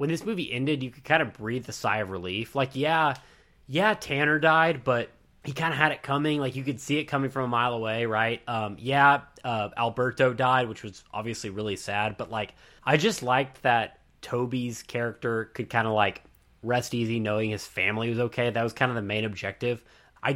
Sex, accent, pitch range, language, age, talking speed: male, American, 115-145 Hz, English, 20-39, 215 wpm